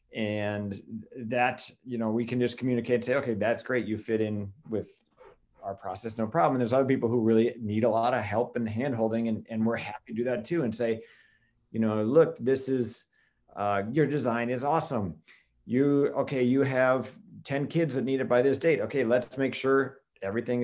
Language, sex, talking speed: English, male, 205 wpm